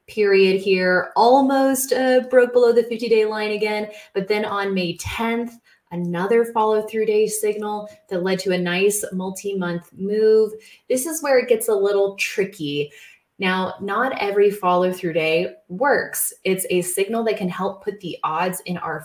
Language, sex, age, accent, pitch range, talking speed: English, female, 20-39, American, 175-215 Hz, 175 wpm